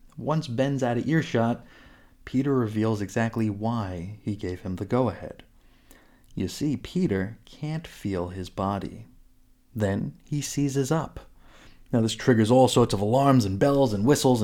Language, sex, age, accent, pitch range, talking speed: English, male, 30-49, American, 100-135 Hz, 150 wpm